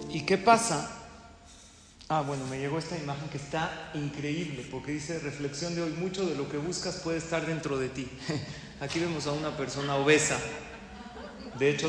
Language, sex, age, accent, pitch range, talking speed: Spanish, male, 40-59, Mexican, 140-180 Hz, 175 wpm